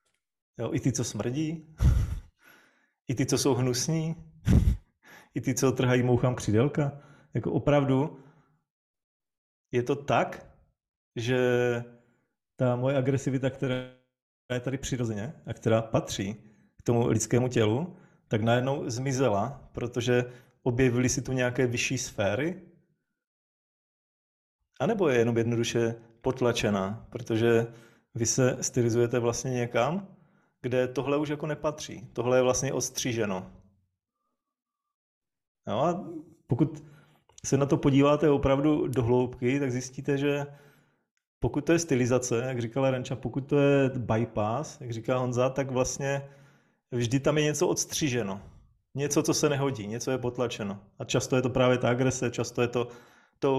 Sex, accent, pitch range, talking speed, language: male, native, 120-145 Hz, 130 wpm, Czech